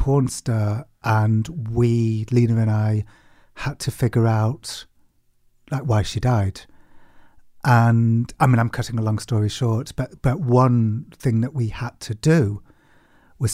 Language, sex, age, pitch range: English, male, 40-59, 110-135 Hz